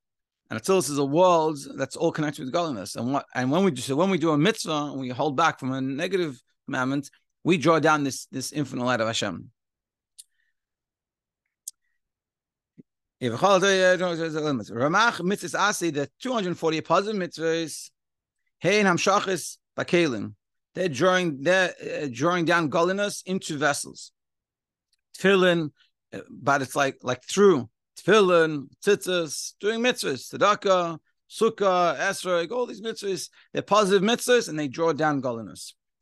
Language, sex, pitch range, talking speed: English, male, 140-190 Hz, 130 wpm